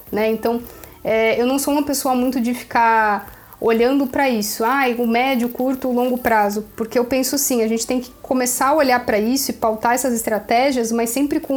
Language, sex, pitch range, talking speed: Portuguese, female, 230-260 Hz, 215 wpm